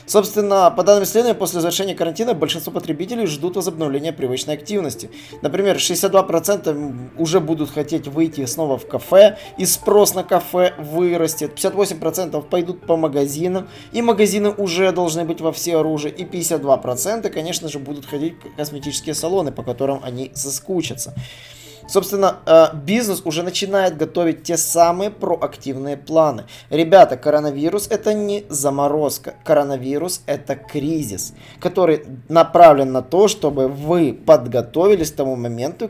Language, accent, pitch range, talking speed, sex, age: Russian, native, 135-175 Hz, 130 wpm, male, 20-39